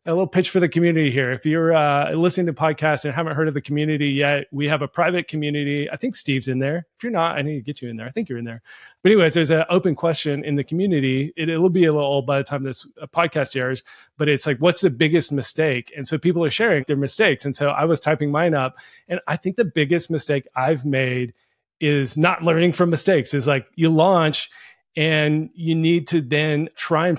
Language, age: English, 30-49